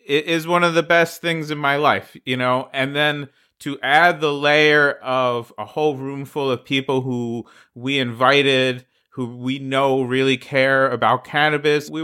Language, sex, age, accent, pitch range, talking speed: English, male, 30-49, American, 120-145 Hz, 180 wpm